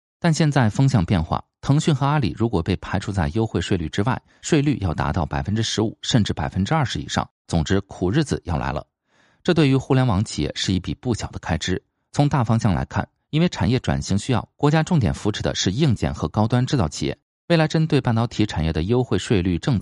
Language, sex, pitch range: Chinese, male, 85-130 Hz